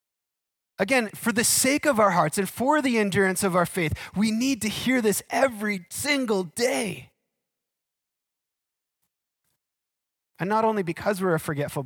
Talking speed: 145 wpm